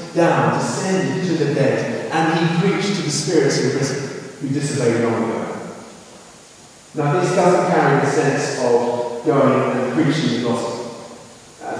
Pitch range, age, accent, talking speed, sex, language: 120-140 Hz, 30-49, British, 140 wpm, male, English